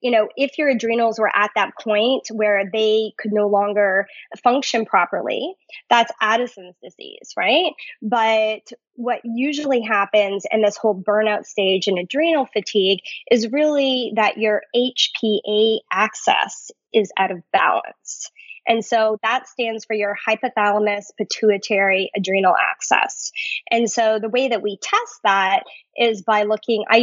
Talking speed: 140 wpm